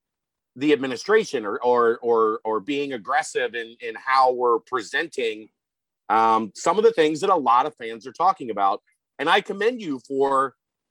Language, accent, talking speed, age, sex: English, American, 170 wpm, 40-59, male